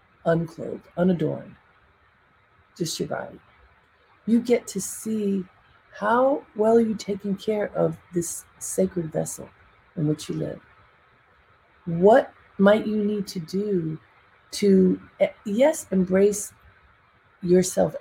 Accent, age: American, 40-59